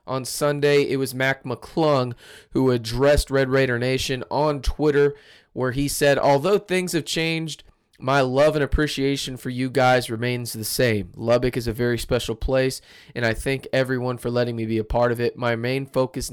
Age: 20-39